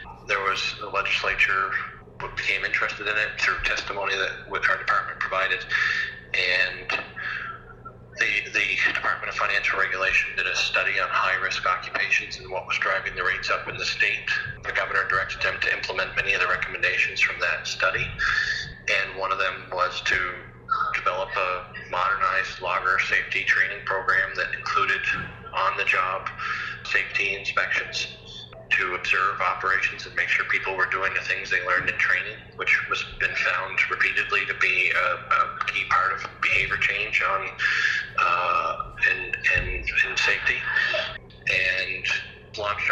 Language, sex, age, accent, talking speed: English, male, 40-59, American, 150 wpm